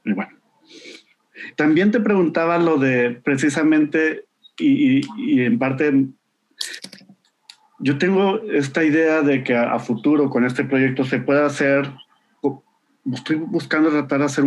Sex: male